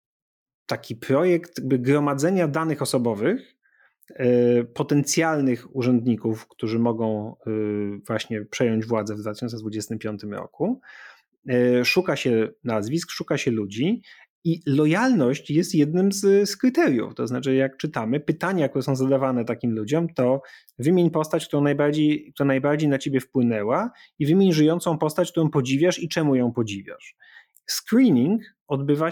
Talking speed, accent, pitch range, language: 125 wpm, native, 125-180 Hz, Polish